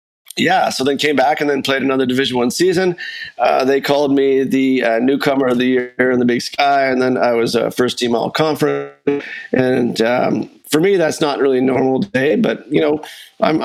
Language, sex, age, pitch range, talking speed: English, male, 40-59, 120-145 Hz, 220 wpm